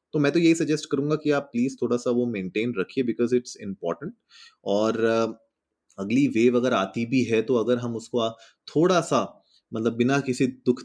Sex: male